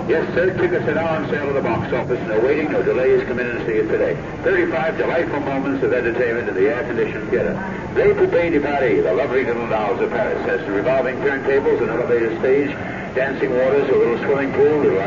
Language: English